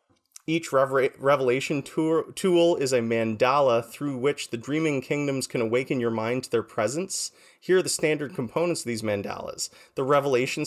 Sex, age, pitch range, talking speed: male, 30-49, 120-175 Hz, 170 wpm